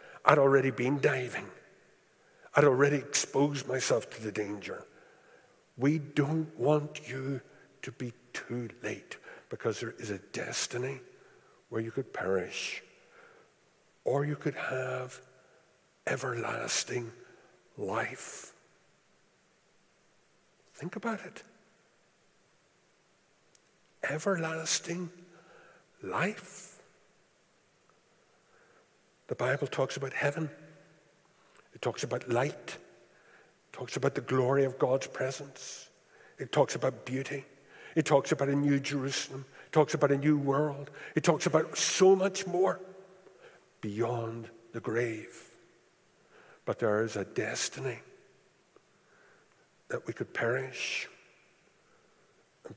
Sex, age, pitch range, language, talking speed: male, 60-79, 125-160 Hz, English, 105 wpm